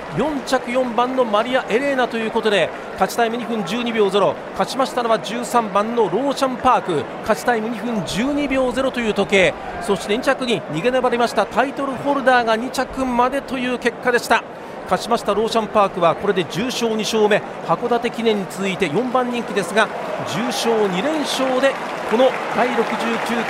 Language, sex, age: Japanese, male, 40-59